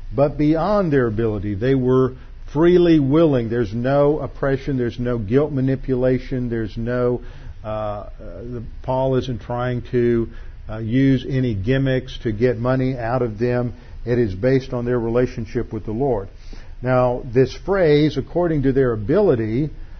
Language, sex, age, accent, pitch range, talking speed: English, male, 50-69, American, 115-135 Hz, 145 wpm